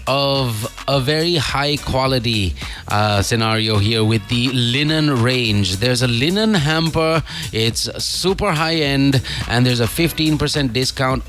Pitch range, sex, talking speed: 110-135 Hz, male, 135 wpm